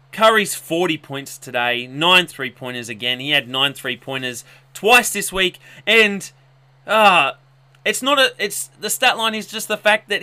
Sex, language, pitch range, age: male, English, 135-195 Hz, 30-49